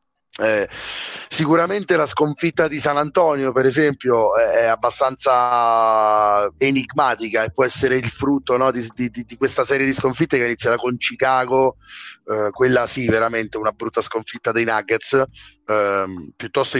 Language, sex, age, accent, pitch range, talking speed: Italian, male, 30-49, native, 110-140 Hz, 145 wpm